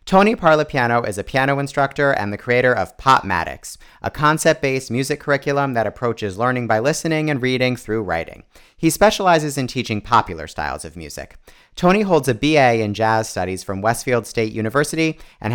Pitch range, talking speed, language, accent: 105-140 Hz, 170 wpm, English, American